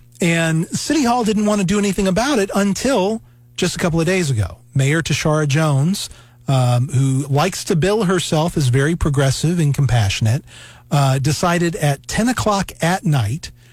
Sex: male